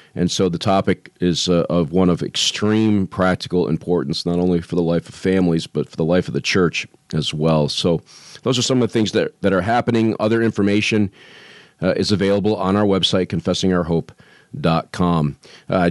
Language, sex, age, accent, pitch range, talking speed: English, male, 40-59, American, 85-105 Hz, 185 wpm